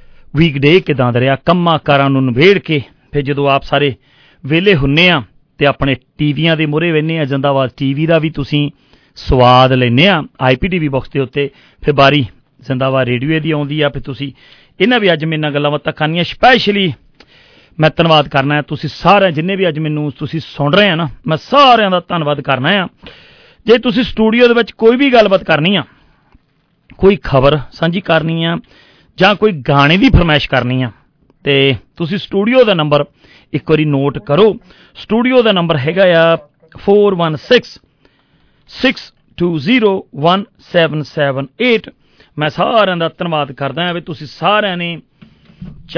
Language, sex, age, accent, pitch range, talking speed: English, male, 40-59, Indian, 140-175 Hz, 100 wpm